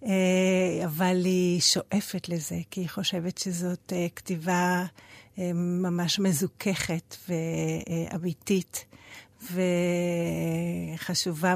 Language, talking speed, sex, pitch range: Hebrew, 65 wpm, female, 180-220 Hz